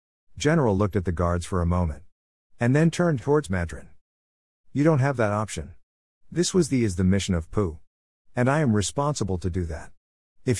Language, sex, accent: English, male, American